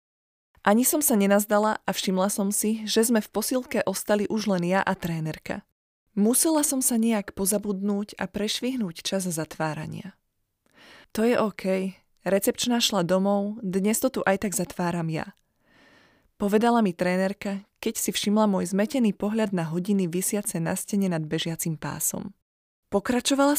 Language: Slovak